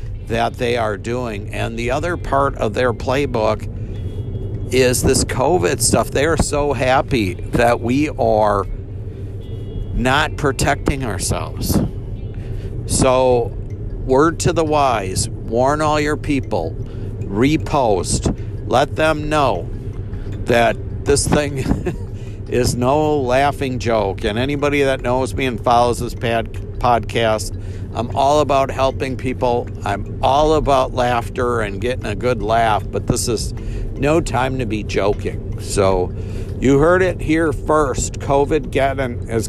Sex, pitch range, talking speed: male, 105-130 Hz, 130 wpm